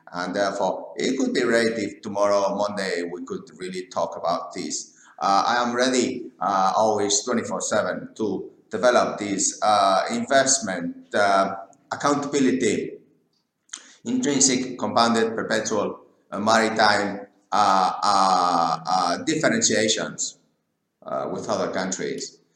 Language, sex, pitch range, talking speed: English, male, 90-115 Hz, 105 wpm